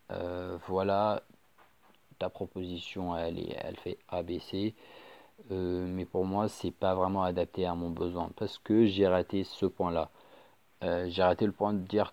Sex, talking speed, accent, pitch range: male, 170 wpm, French, 90-100 Hz